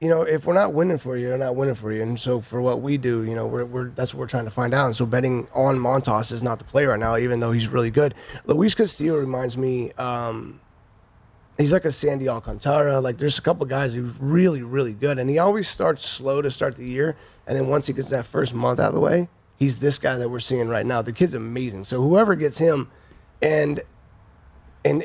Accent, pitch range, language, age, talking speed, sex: American, 125-160 Hz, English, 30-49, 245 wpm, male